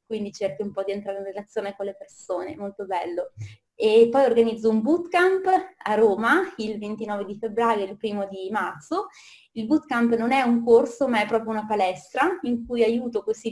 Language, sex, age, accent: Italian, female, 20-39, native